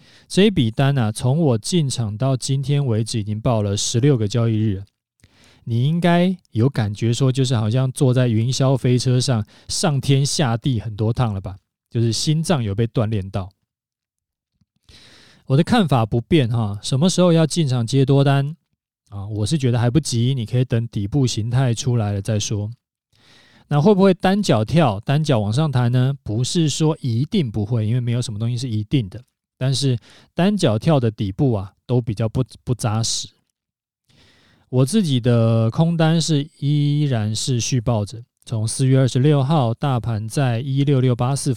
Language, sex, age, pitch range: Chinese, male, 20-39, 115-140 Hz